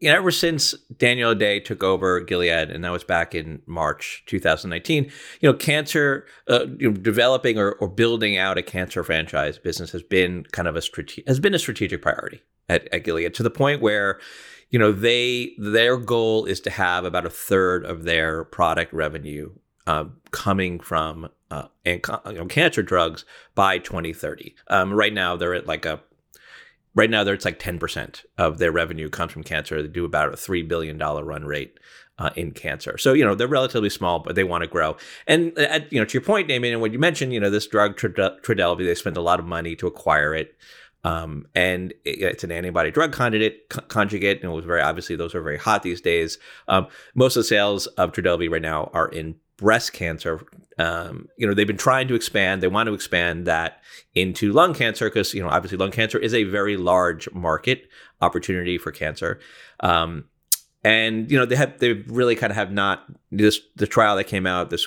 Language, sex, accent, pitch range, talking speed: English, male, American, 85-115 Hz, 195 wpm